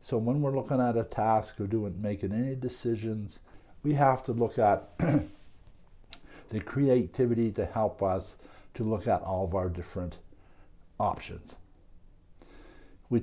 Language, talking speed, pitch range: English, 140 wpm, 90-115 Hz